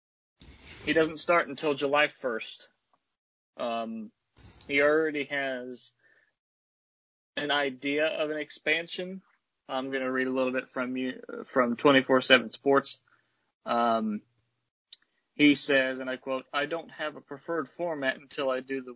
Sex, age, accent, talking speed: male, 30-49, American, 135 wpm